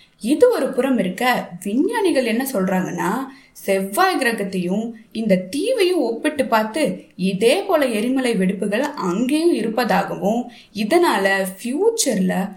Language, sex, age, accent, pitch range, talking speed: Tamil, female, 20-39, native, 205-290 Hz, 100 wpm